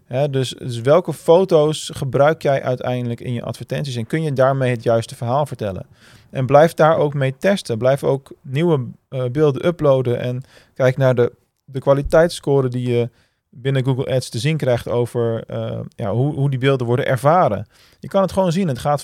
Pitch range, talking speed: 120-145 Hz, 190 wpm